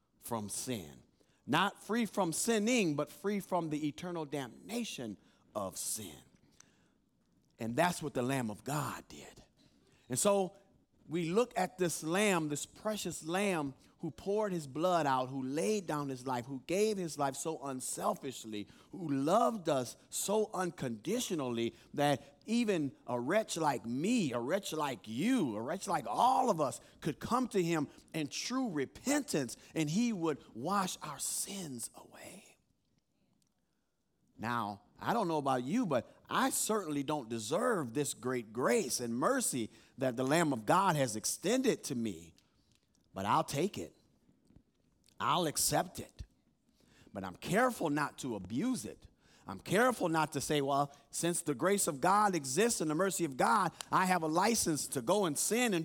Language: English